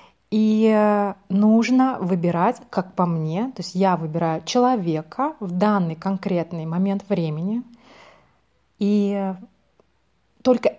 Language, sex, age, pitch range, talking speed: Russian, female, 30-49, 175-220 Hz, 100 wpm